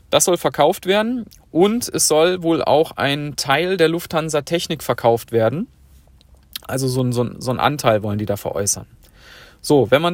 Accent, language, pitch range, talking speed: German, German, 125-160 Hz, 185 wpm